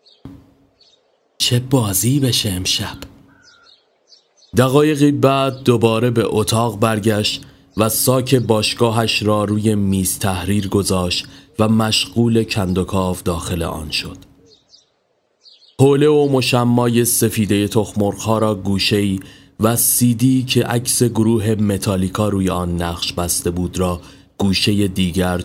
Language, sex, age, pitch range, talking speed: Persian, male, 30-49, 95-115 Hz, 110 wpm